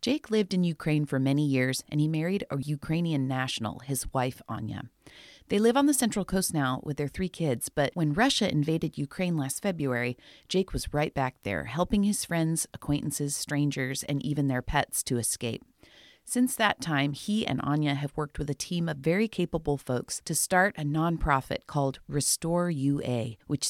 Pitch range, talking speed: 135-180 Hz, 185 wpm